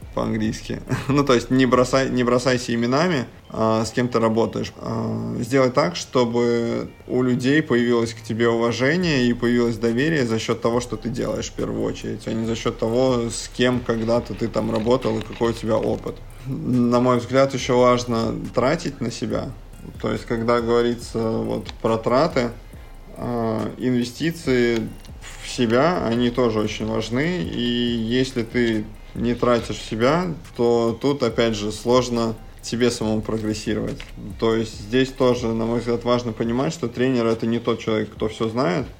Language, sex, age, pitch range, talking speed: Russian, male, 20-39, 115-125 Hz, 160 wpm